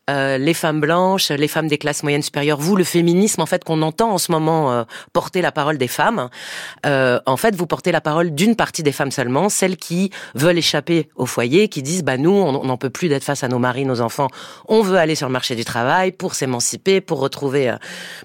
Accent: French